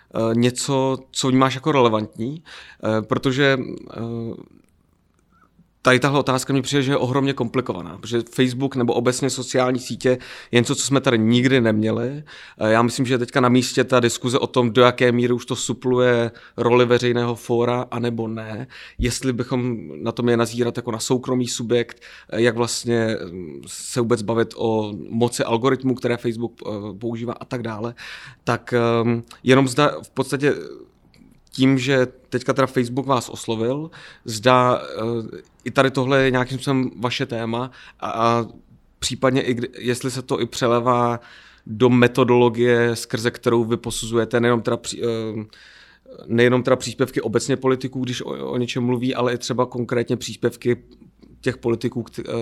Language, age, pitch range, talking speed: Czech, 30-49, 115-130 Hz, 150 wpm